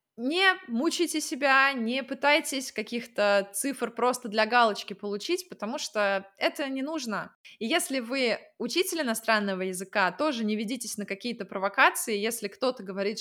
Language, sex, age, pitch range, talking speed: Russian, female, 20-39, 195-255 Hz, 140 wpm